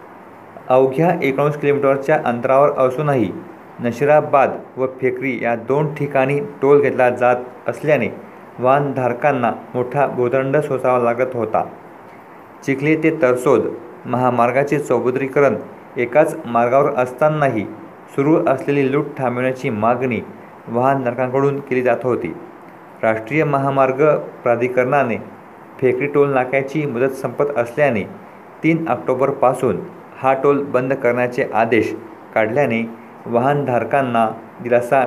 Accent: native